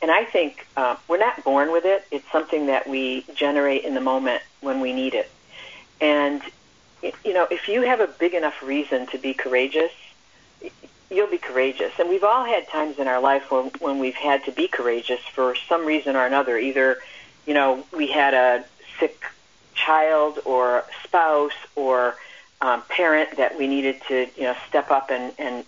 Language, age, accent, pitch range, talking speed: English, 50-69, American, 130-155 Hz, 185 wpm